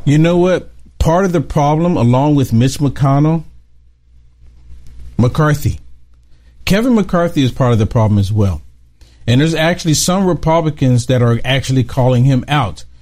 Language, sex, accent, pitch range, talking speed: English, male, American, 110-170 Hz, 145 wpm